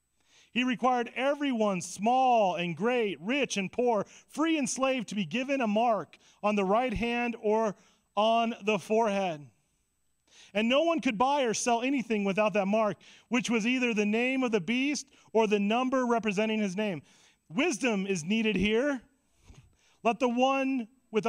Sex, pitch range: male, 195-275 Hz